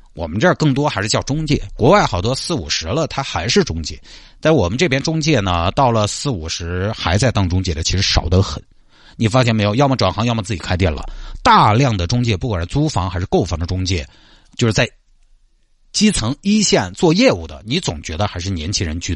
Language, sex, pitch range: Chinese, male, 95-140 Hz